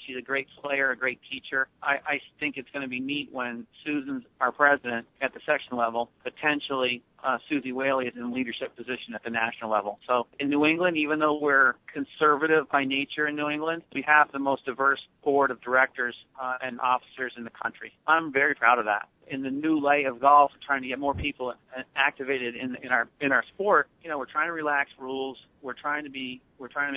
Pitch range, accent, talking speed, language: 125-140 Hz, American, 220 wpm, English